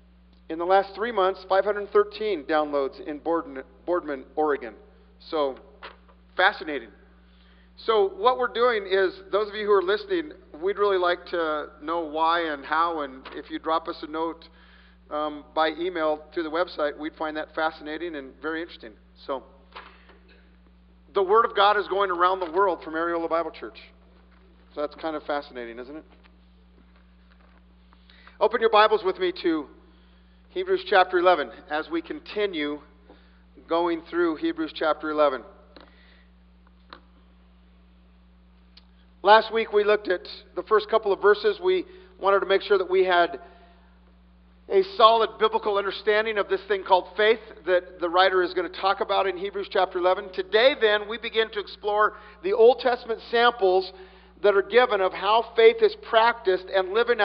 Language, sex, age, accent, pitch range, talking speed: English, male, 50-69, American, 130-210 Hz, 155 wpm